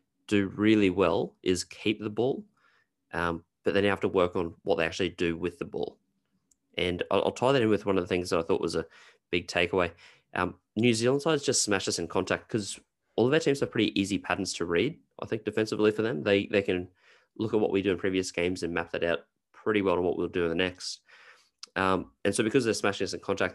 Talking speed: 250 wpm